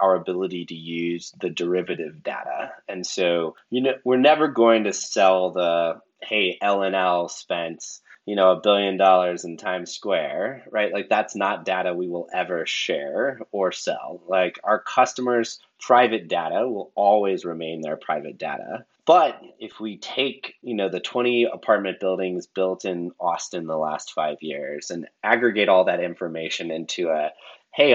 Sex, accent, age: male, American, 20-39